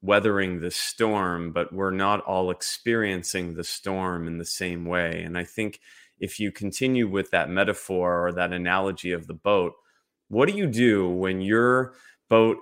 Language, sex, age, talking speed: English, male, 30-49, 170 wpm